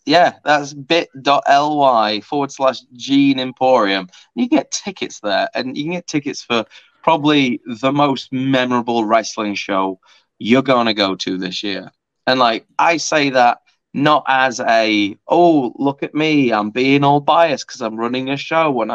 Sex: male